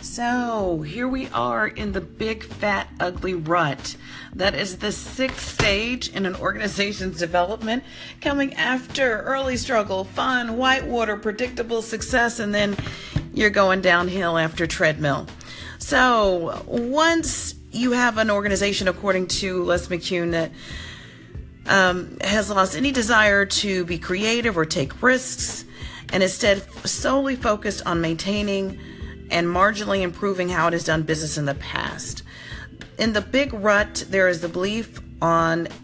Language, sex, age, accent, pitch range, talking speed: English, female, 40-59, American, 170-220 Hz, 135 wpm